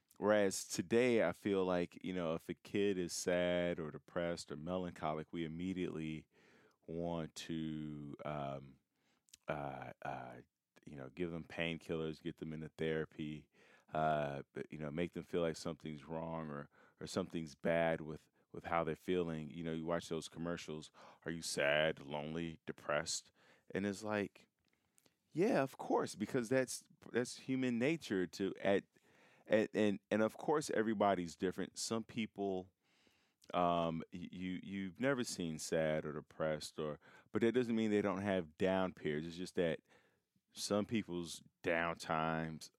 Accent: American